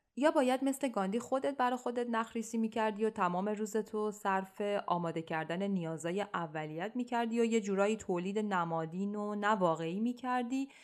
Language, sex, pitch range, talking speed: Persian, female, 175-255 Hz, 145 wpm